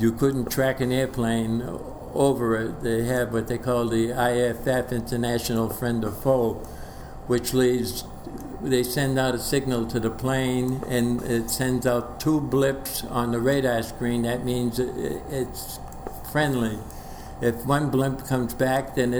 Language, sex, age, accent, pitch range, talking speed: English, male, 60-79, American, 115-130 Hz, 150 wpm